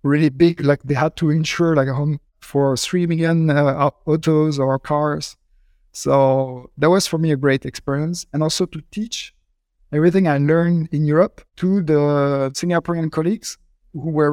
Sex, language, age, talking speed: male, English, 50-69, 170 wpm